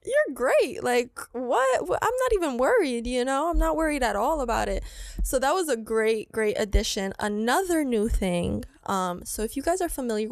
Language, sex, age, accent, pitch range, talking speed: English, female, 20-39, American, 205-240 Hz, 200 wpm